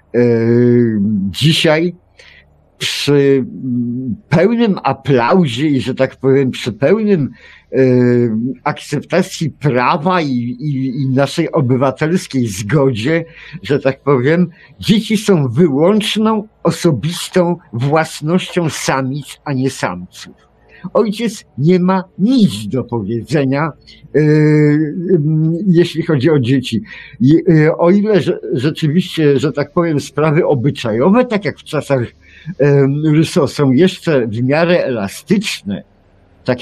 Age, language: 50-69, Polish